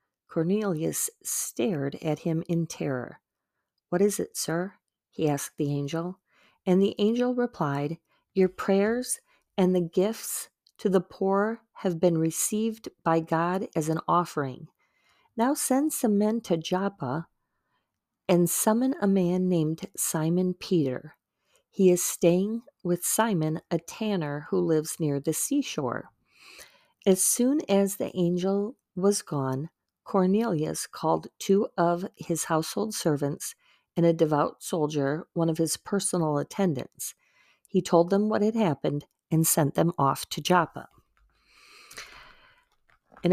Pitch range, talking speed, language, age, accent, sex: 160-205 Hz, 130 wpm, English, 40-59, American, female